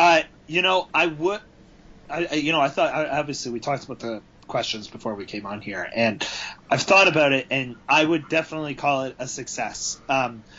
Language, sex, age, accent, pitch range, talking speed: English, male, 30-49, American, 130-160 Hz, 200 wpm